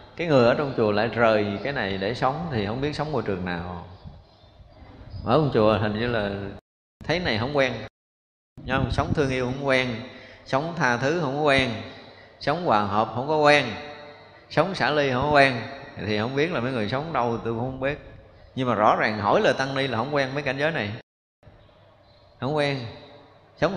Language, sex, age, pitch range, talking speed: Vietnamese, male, 20-39, 110-145 Hz, 205 wpm